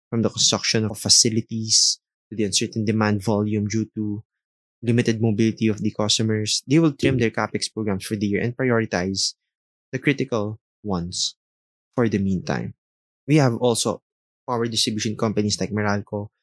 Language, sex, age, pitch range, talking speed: English, male, 20-39, 105-115 Hz, 155 wpm